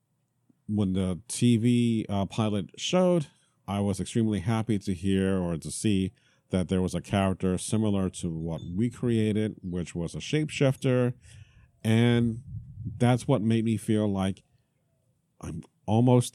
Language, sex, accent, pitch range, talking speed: English, male, American, 95-120 Hz, 140 wpm